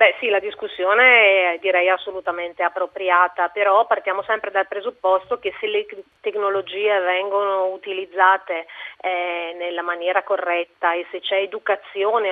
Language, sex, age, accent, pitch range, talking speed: Italian, female, 30-49, native, 185-210 Hz, 130 wpm